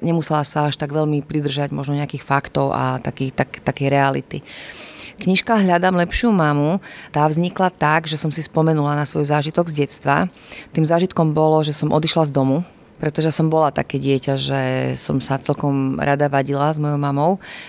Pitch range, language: 140-160 Hz, Slovak